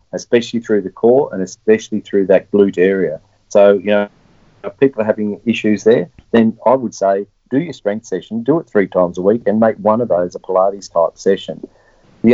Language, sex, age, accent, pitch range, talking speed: English, male, 40-59, Australian, 100-115 Hz, 205 wpm